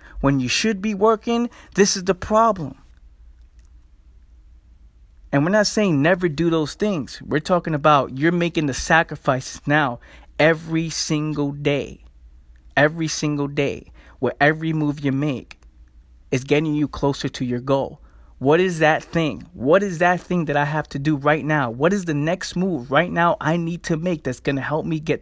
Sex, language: male, English